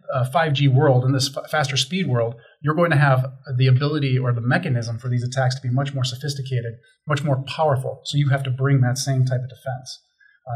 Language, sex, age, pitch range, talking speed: English, male, 30-49, 130-155 Hz, 225 wpm